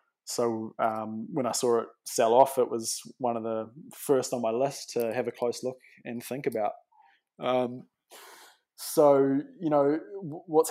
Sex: male